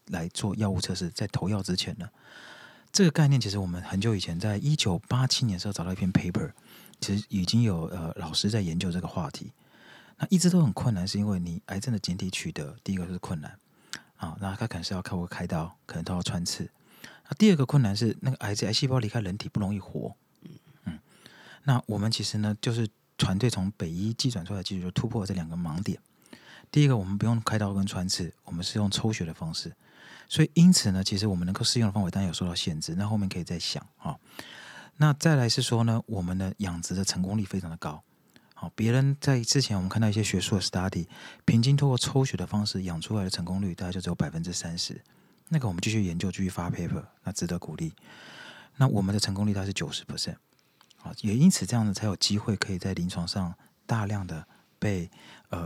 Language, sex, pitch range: Chinese, male, 90-115 Hz